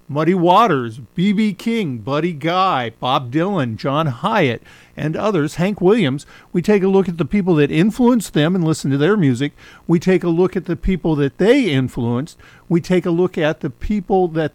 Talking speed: 195 wpm